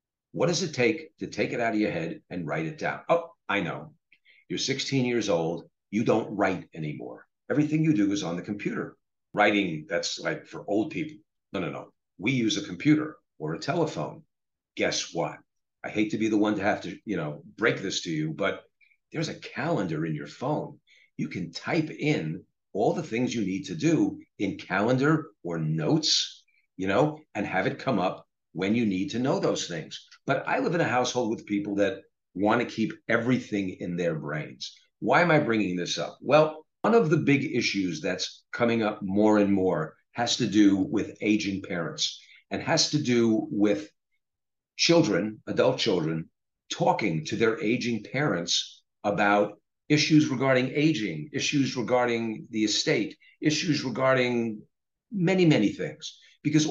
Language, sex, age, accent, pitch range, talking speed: English, male, 50-69, American, 105-155 Hz, 180 wpm